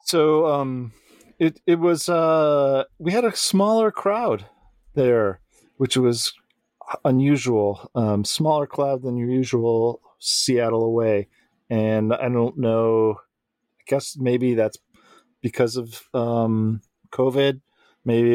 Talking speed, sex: 120 wpm, male